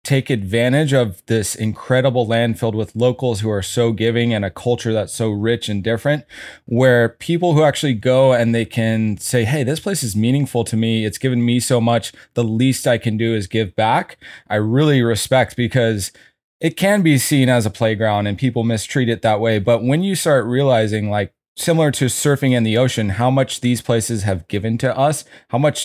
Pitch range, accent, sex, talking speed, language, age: 115-135 Hz, American, male, 205 wpm, English, 20-39